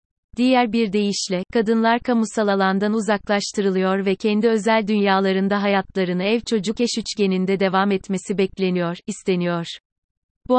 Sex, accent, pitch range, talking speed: female, native, 190-220 Hz, 115 wpm